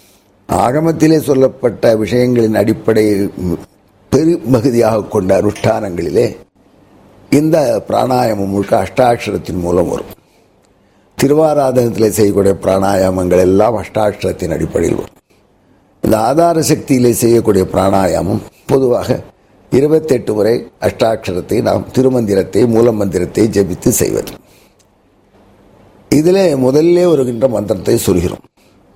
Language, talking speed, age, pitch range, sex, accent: Tamil, 80 wpm, 60-79, 95-130 Hz, male, native